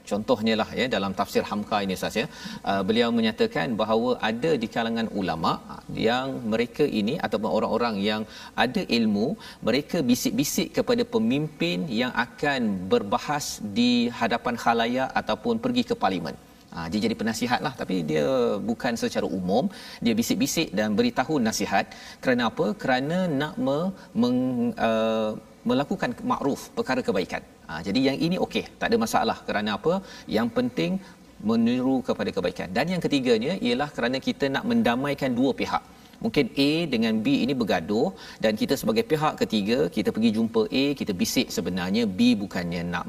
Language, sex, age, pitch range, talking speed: Malayalam, male, 40-59, 160-245 Hz, 150 wpm